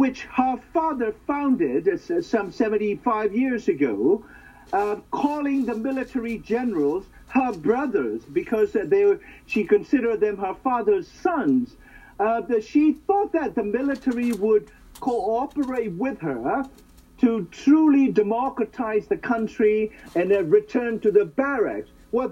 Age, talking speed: 50-69, 125 wpm